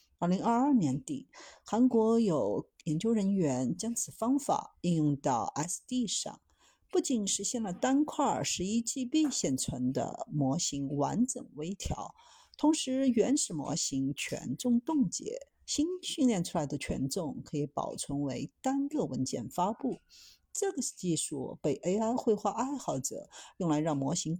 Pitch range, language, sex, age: 165-270 Hz, Chinese, female, 50-69